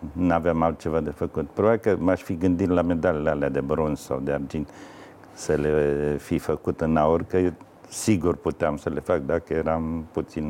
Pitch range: 80-100 Hz